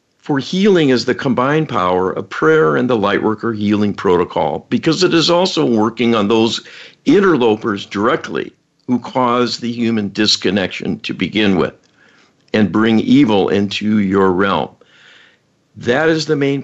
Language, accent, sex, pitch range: English, American, male, 105-145 Hz